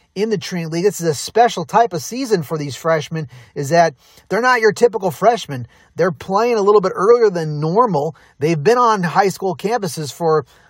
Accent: American